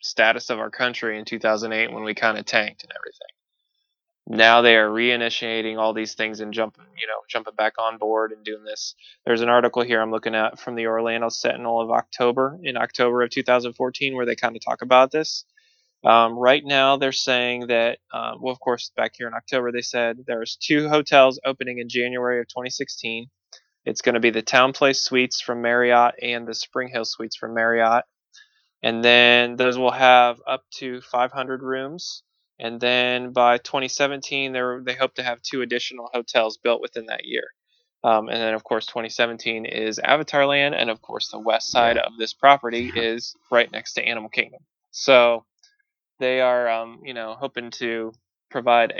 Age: 20-39